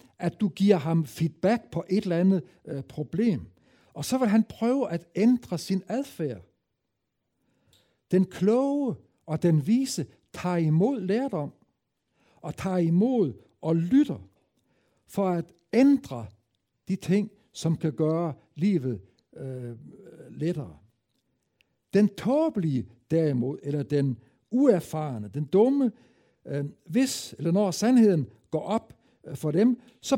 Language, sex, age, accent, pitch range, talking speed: Danish, male, 60-79, German, 145-220 Hz, 115 wpm